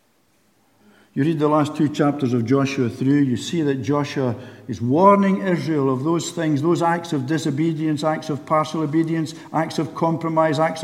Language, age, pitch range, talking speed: English, 60-79, 105-160 Hz, 170 wpm